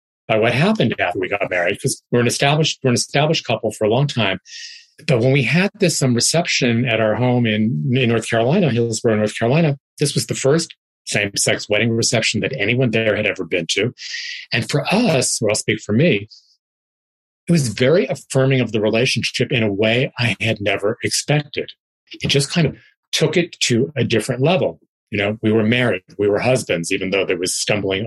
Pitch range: 110-145 Hz